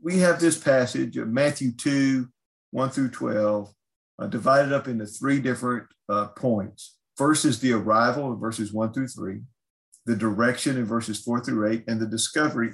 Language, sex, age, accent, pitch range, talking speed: English, male, 50-69, American, 105-130 Hz, 175 wpm